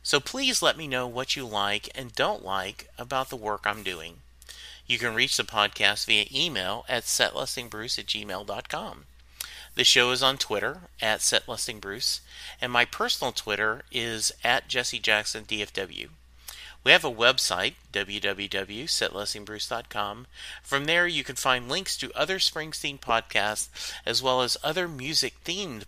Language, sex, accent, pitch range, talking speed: English, male, American, 105-135 Hz, 140 wpm